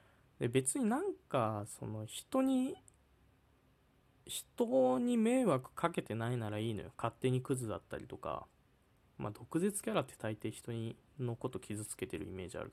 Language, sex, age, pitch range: Japanese, male, 20-39, 110-180 Hz